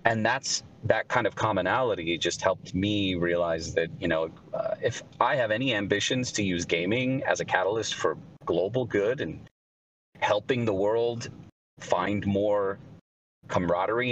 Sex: male